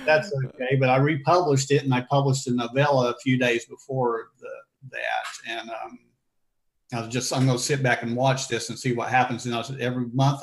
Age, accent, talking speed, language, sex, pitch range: 50-69, American, 220 wpm, English, male, 115-135 Hz